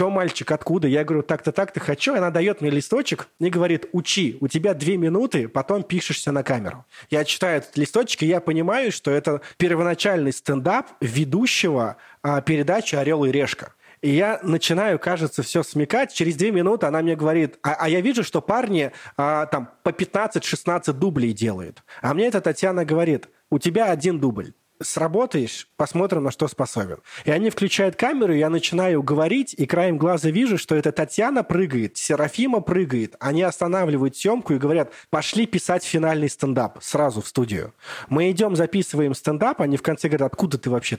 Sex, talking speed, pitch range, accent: male, 175 wpm, 140-180 Hz, native